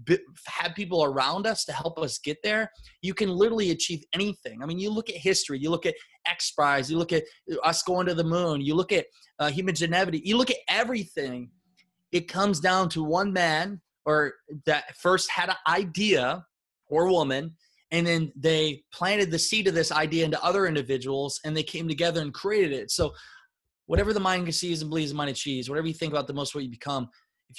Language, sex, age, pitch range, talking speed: English, male, 20-39, 145-180 Hz, 210 wpm